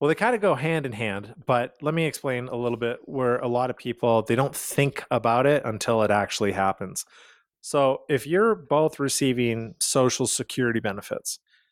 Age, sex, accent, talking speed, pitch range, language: 30-49, male, American, 190 wpm, 110-140 Hz, English